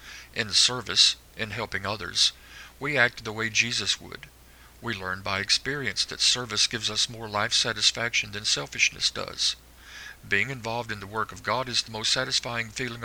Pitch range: 95-120 Hz